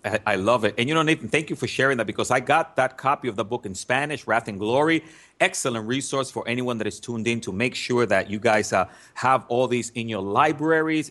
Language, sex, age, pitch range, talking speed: English, male, 30-49, 105-130 Hz, 250 wpm